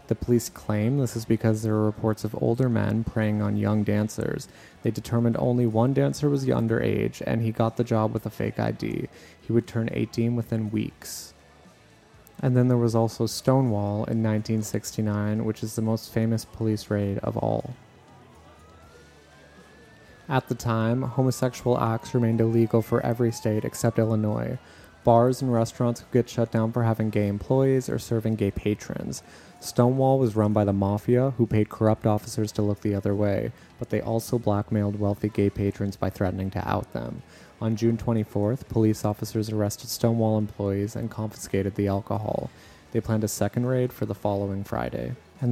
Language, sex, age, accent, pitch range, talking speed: English, male, 20-39, American, 105-120 Hz, 175 wpm